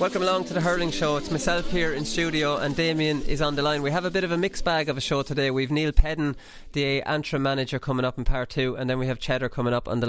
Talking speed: 290 wpm